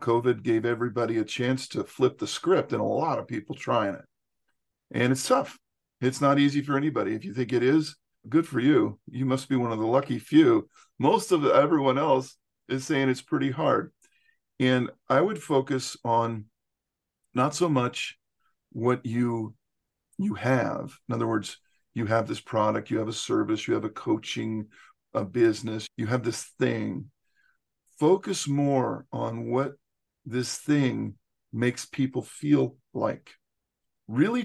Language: English